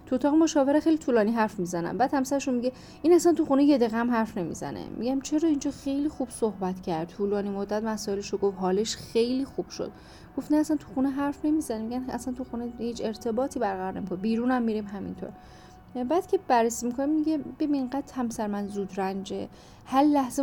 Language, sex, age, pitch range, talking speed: Persian, female, 10-29, 195-270 Hz, 190 wpm